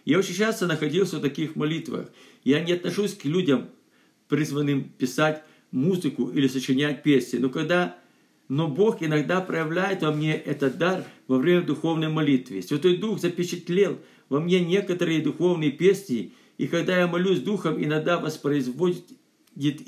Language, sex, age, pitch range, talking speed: Russian, male, 50-69, 140-180 Hz, 140 wpm